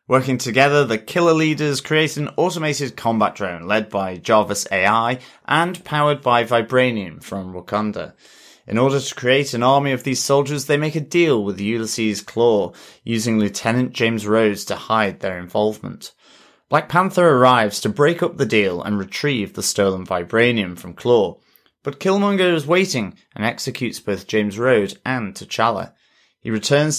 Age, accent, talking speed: 30-49, British, 160 wpm